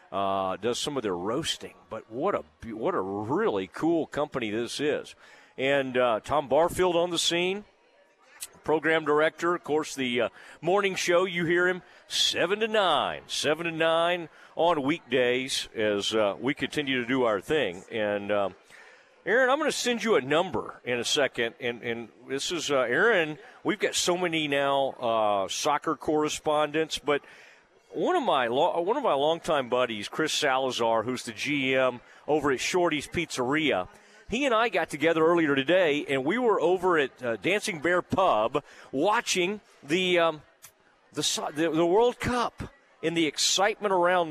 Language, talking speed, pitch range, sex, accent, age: English, 165 wpm, 125-170 Hz, male, American, 40-59